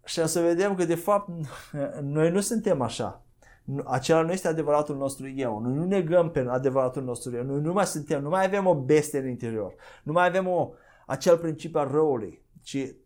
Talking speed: 200 wpm